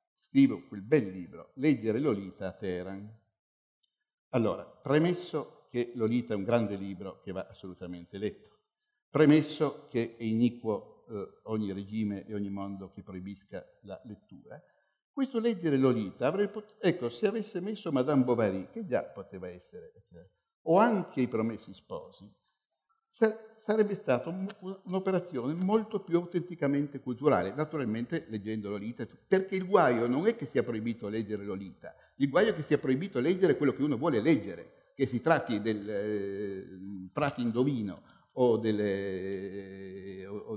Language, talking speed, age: Italian, 145 wpm, 60-79